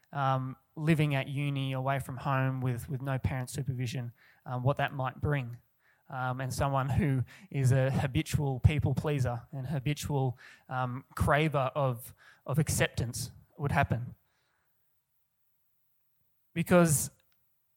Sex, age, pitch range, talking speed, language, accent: male, 20-39, 130-150 Hz, 120 wpm, English, Australian